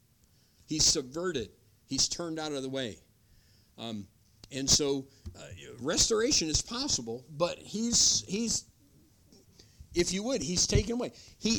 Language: English